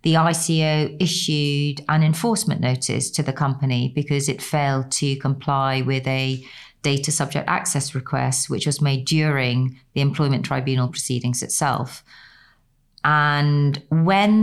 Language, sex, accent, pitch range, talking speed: English, female, British, 130-155 Hz, 130 wpm